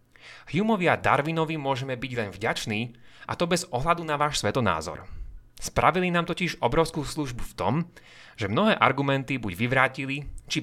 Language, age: Slovak, 30-49